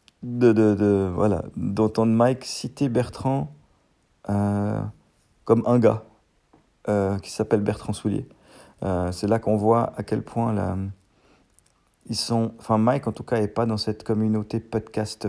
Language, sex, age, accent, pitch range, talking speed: French, male, 40-59, French, 100-115 Hz, 150 wpm